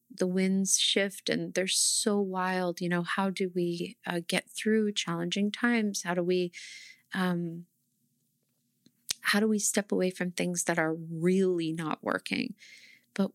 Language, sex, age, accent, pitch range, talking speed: English, female, 30-49, American, 185-215 Hz, 155 wpm